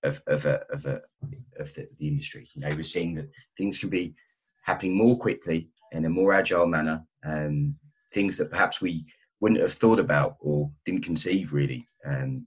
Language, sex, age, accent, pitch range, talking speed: English, male, 30-49, British, 75-100 Hz, 190 wpm